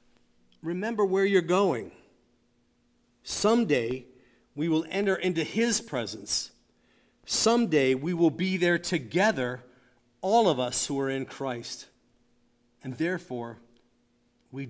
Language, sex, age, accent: English, male, 50-69, American